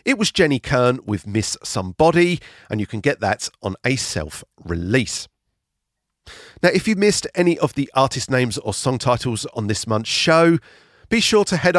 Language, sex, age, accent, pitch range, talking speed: English, male, 40-59, British, 100-150 Hz, 180 wpm